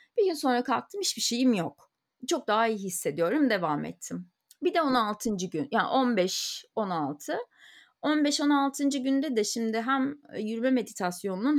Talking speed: 135 wpm